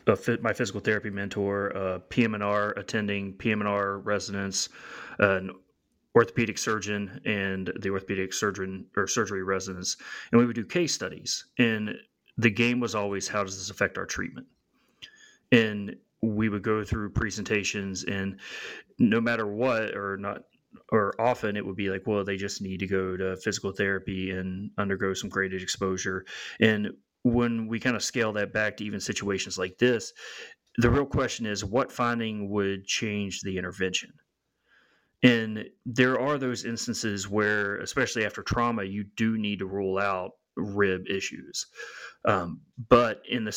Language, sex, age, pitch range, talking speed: English, male, 30-49, 95-110 Hz, 155 wpm